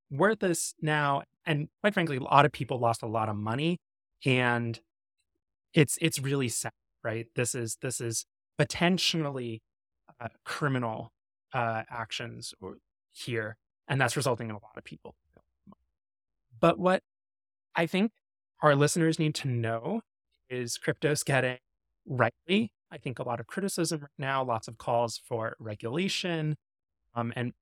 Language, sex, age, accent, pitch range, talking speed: English, male, 20-39, American, 115-155 Hz, 150 wpm